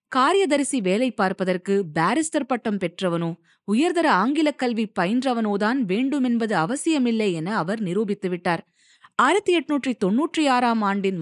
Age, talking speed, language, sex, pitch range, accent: 20-39, 105 wpm, Tamil, female, 185-260 Hz, native